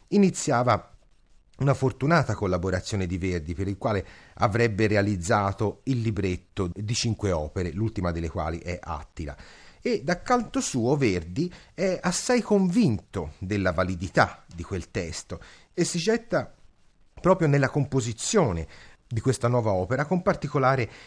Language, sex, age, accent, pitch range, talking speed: Italian, male, 30-49, native, 95-150 Hz, 130 wpm